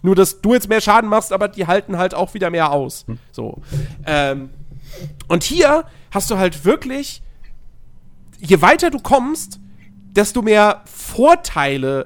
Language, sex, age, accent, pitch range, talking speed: German, male, 40-59, German, 145-225 Hz, 150 wpm